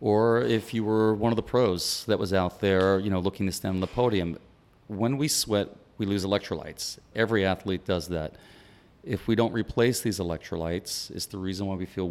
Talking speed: 210 wpm